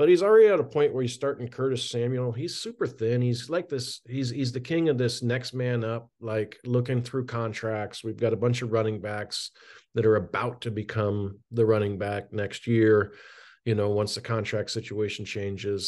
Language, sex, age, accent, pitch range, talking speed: English, male, 40-59, American, 105-130 Hz, 205 wpm